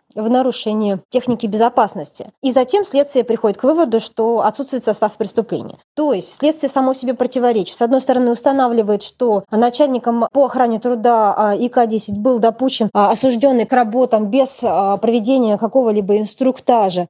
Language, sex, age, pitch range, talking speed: Russian, female, 20-39, 205-250 Hz, 135 wpm